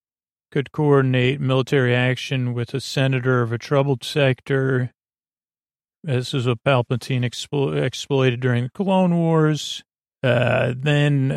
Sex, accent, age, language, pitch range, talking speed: male, American, 40-59, English, 125-140 Hz, 120 wpm